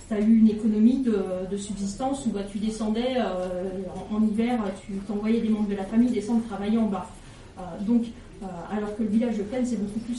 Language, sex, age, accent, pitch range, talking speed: French, female, 30-49, French, 220-285 Hz, 225 wpm